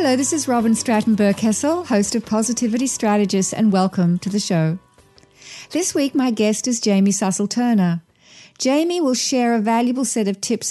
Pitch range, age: 195-245 Hz, 50-69